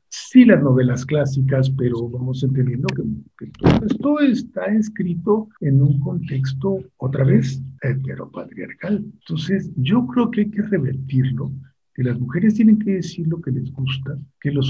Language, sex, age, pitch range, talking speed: Spanish, male, 50-69, 135-190 Hz, 160 wpm